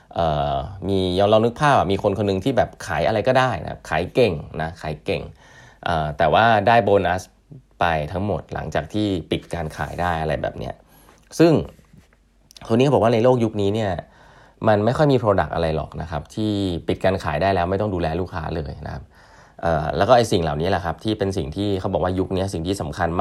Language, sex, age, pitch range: Thai, male, 20-39, 80-110 Hz